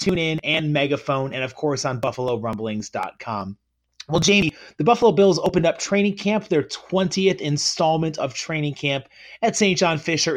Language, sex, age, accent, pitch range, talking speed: English, male, 30-49, American, 140-175 Hz, 160 wpm